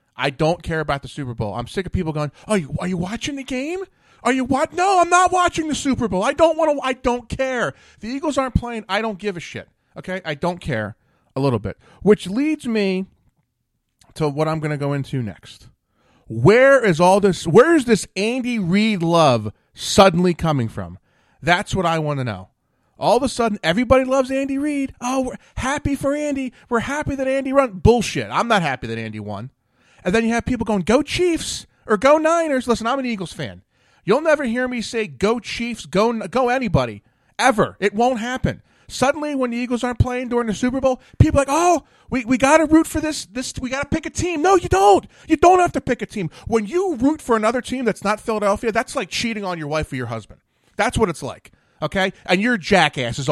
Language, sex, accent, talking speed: English, male, American, 225 wpm